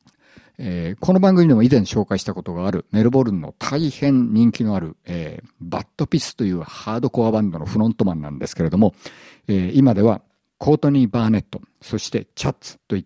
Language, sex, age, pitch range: Japanese, male, 50-69, 95-130 Hz